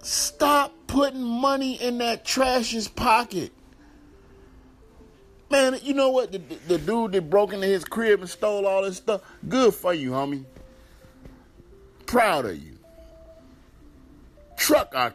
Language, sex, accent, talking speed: English, male, American, 135 wpm